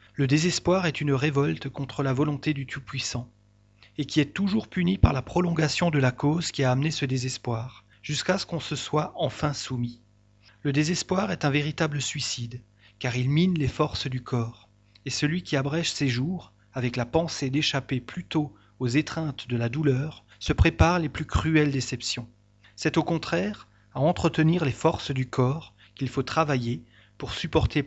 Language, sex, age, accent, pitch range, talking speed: French, male, 30-49, French, 115-155 Hz, 180 wpm